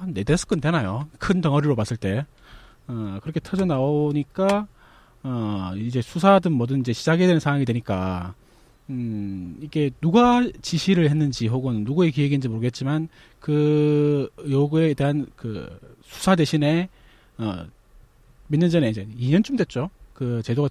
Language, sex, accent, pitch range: Korean, male, native, 120-175 Hz